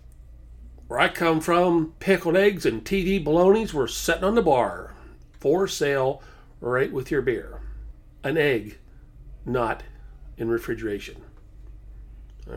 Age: 40-59